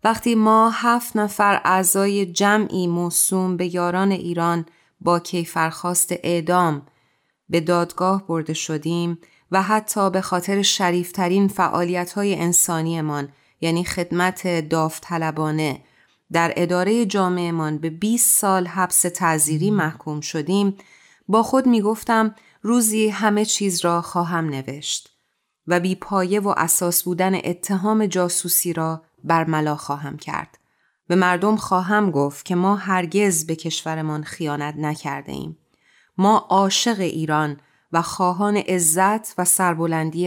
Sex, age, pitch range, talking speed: female, 30-49, 165-200 Hz, 120 wpm